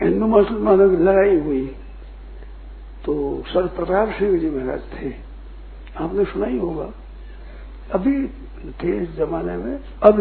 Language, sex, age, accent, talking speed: Hindi, male, 60-79, native, 125 wpm